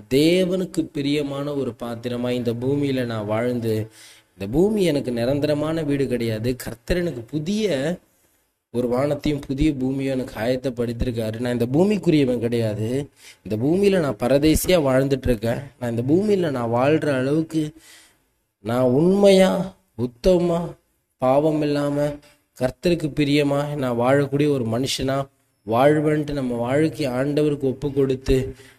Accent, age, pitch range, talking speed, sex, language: native, 20-39, 120-150 Hz, 115 wpm, male, Tamil